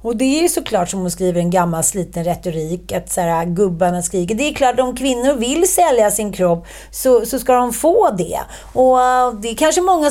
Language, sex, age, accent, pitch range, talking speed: Swedish, female, 30-49, native, 185-245 Hz, 225 wpm